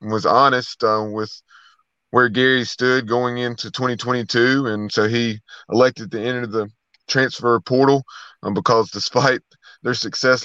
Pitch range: 115-130 Hz